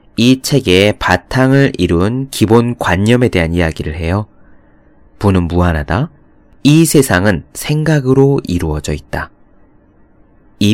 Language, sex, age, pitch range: Korean, male, 20-39, 85-130 Hz